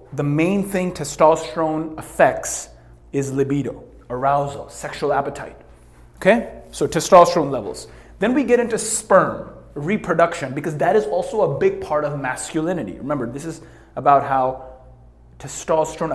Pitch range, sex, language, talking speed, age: 135-190 Hz, male, English, 130 wpm, 30-49